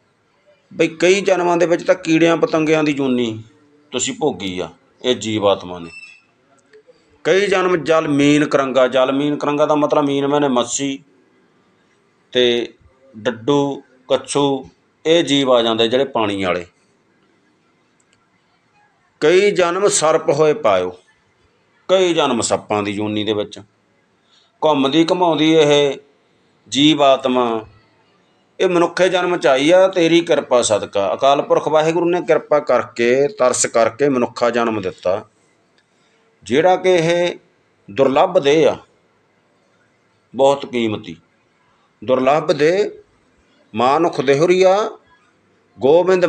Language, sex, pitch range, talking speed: Punjabi, male, 125-170 Hz, 105 wpm